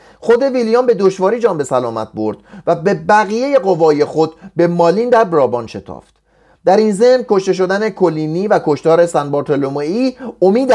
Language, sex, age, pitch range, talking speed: Persian, male, 30-49, 155-205 Hz, 155 wpm